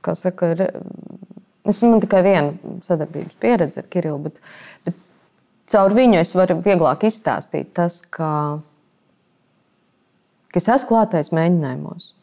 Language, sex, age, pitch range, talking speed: English, female, 20-39, 175-255 Hz, 120 wpm